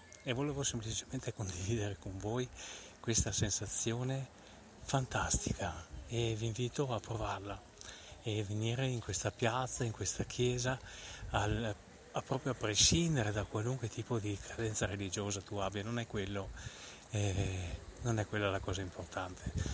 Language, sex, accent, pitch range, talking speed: Italian, male, native, 95-115 Hz, 125 wpm